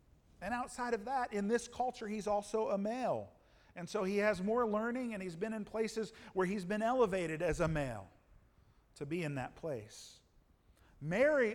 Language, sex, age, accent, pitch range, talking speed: English, male, 50-69, American, 180-240 Hz, 180 wpm